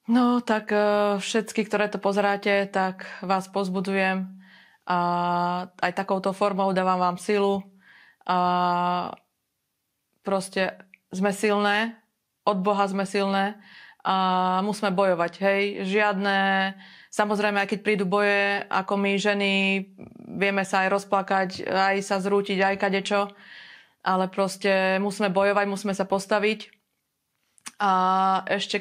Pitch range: 190-205 Hz